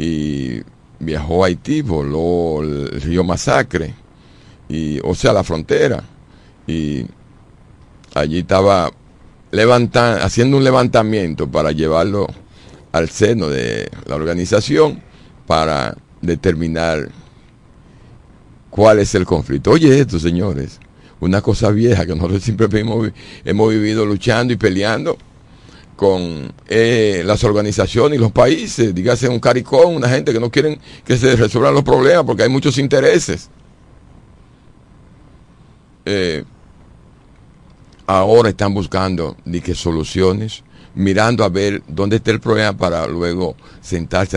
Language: Spanish